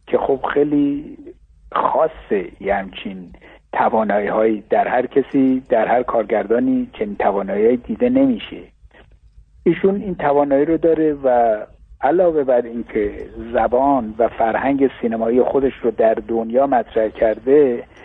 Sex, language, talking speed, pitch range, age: male, Persian, 115 wpm, 120-155 Hz, 60-79